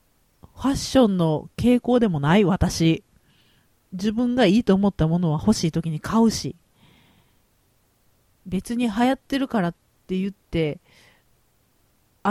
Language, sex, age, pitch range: Japanese, female, 40-59, 155-235 Hz